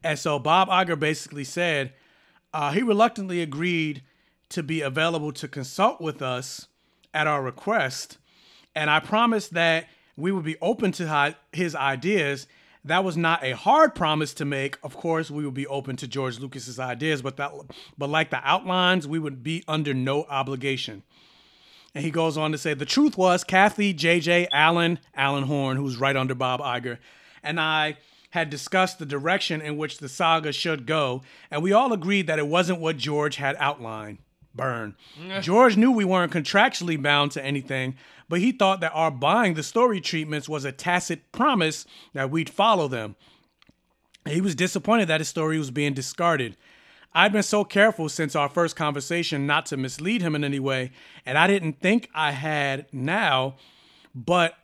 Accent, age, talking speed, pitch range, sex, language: American, 30-49, 175 wpm, 140-175 Hz, male, English